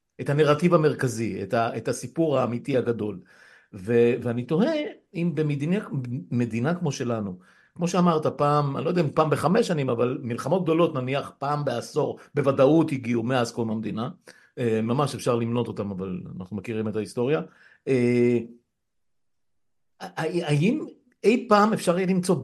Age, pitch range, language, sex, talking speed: 50-69, 120-175 Hz, Hebrew, male, 140 wpm